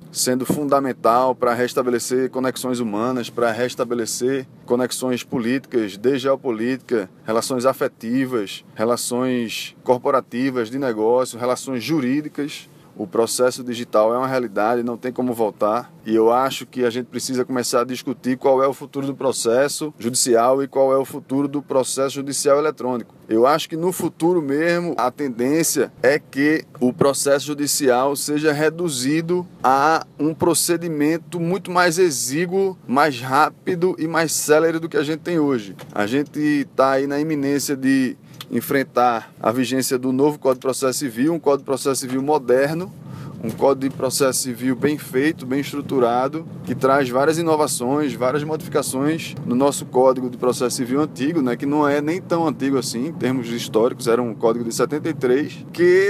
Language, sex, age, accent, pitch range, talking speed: Portuguese, male, 20-39, Brazilian, 125-165 Hz, 160 wpm